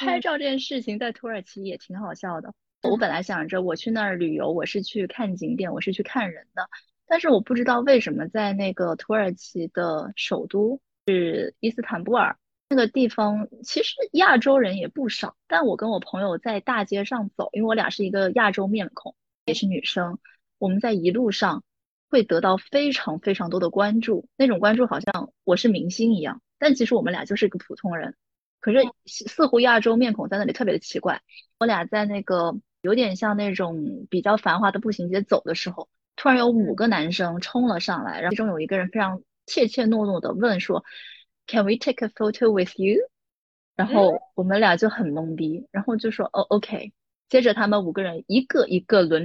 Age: 20-39